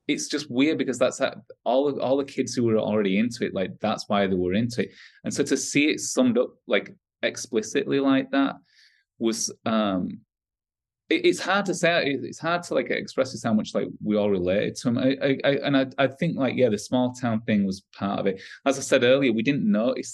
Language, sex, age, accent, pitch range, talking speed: English, male, 20-39, British, 100-135 Hz, 235 wpm